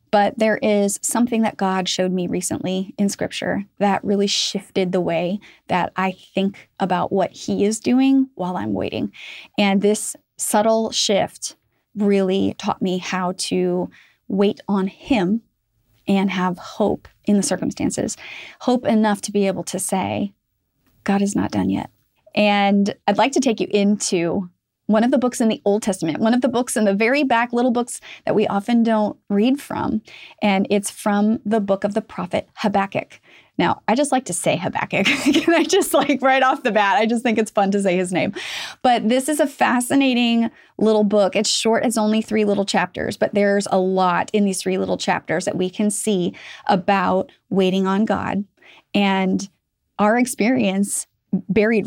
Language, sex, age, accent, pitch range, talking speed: English, female, 30-49, American, 190-225 Hz, 180 wpm